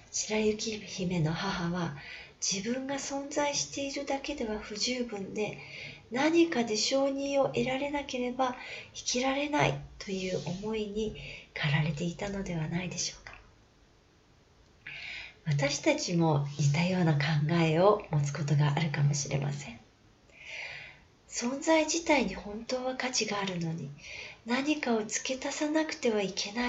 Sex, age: female, 40-59